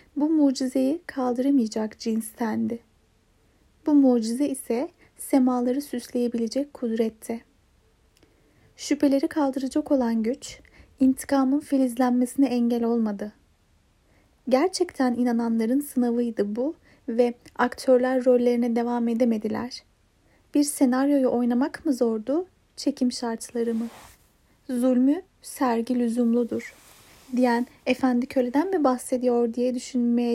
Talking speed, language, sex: 90 wpm, Turkish, female